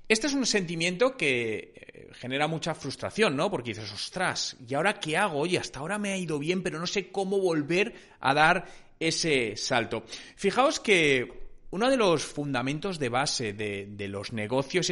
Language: Spanish